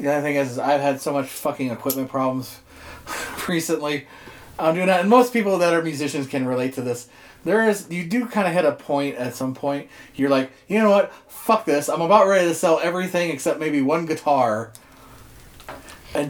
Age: 30-49